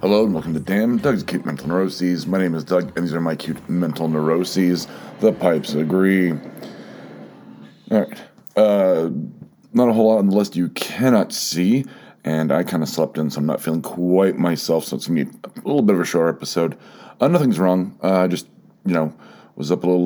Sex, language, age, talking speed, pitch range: male, English, 40-59, 215 wpm, 80-95 Hz